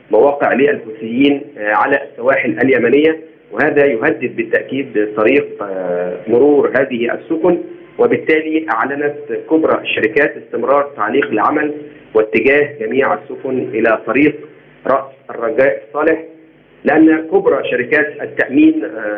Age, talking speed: 40-59, 95 wpm